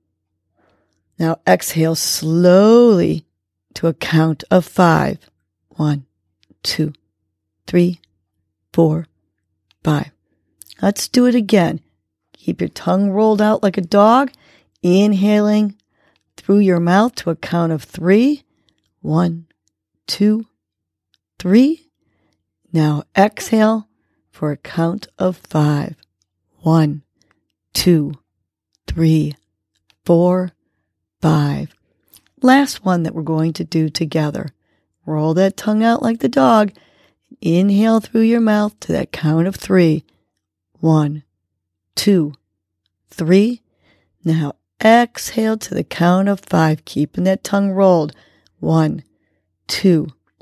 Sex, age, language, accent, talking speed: female, 40-59, English, American, 105 wpm